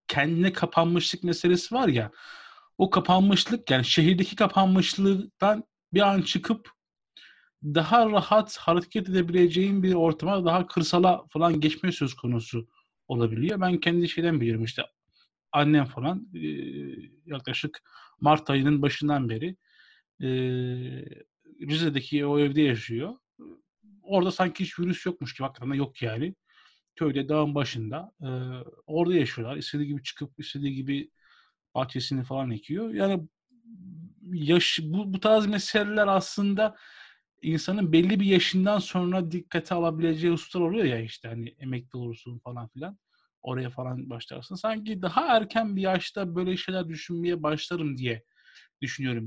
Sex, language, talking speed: male, Turkish, 125 wpm